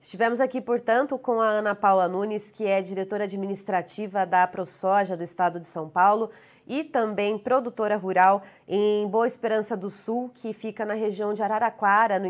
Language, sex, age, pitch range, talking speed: Portuguese, female, 20-39, 185-225 Hz, 170 wpm